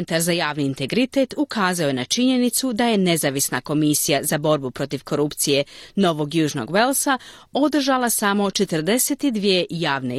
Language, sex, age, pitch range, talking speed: Croatian, female, 40-59, 155-255 Hz, 130 wpm